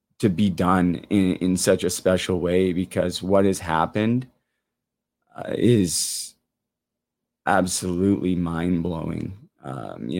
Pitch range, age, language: 85-95 Hz, 20-39, English